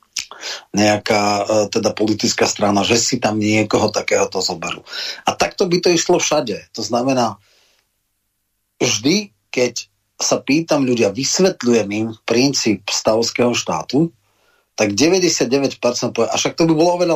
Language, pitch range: Slovak, 110-130 Hz